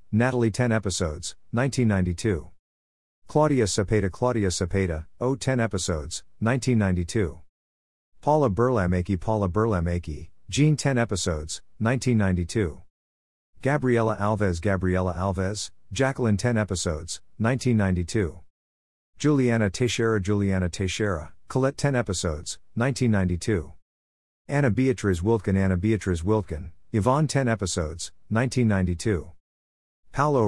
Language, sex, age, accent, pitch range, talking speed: English, male, 50-69, American, 85-115 Hz, 95 wpm